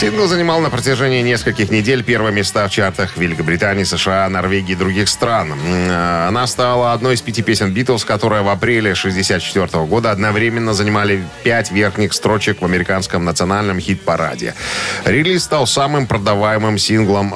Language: Russian